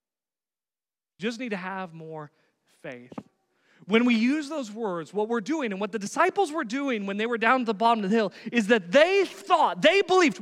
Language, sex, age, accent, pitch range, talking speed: English, male, 30-49, American, 235-350 Hz, 205 wpm